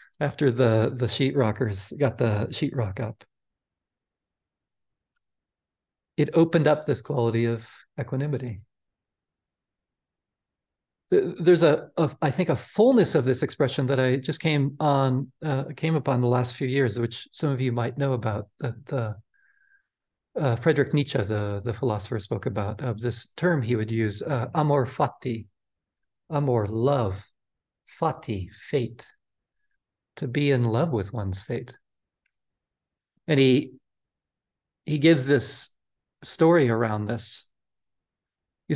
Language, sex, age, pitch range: English, male, 40-59, 115-155 Hz